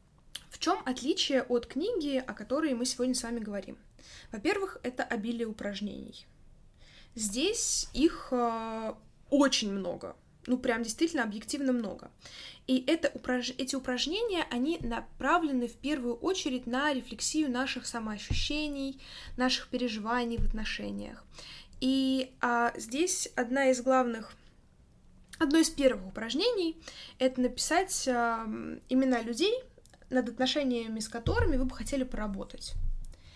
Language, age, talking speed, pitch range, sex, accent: Russian, 10-29, 120 wpm, 220-275 Hz, female, native